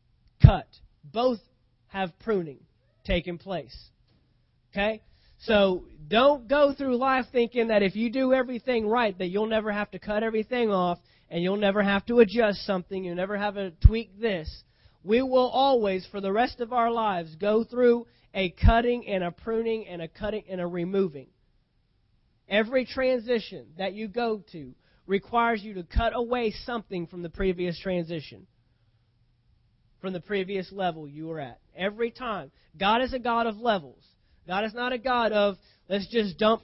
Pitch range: 185-235 Hz